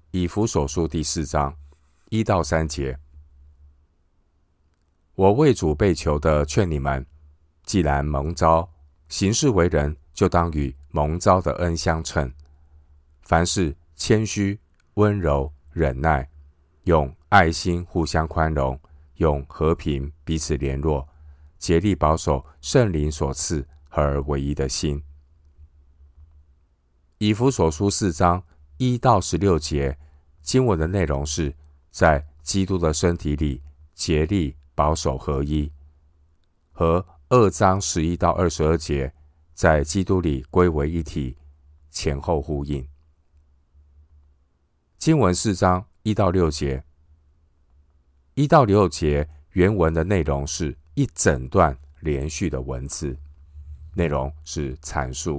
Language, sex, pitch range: Chinese, male, 75-85 Hz